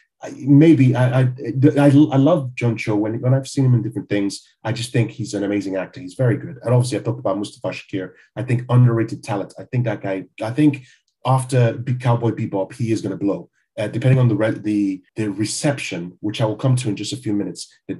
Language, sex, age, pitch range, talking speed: English, male, 30-49, 110-135 Hz, 235 wpm